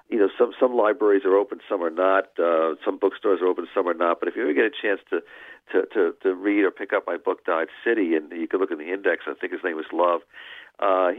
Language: English